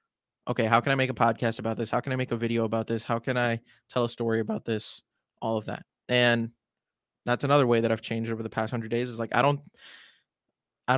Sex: male